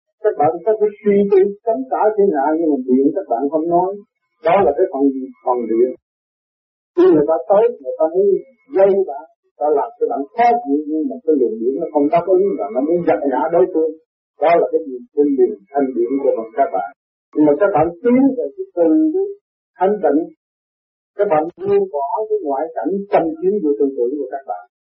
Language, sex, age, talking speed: Vietnamese, male, 50-69, 225 wpm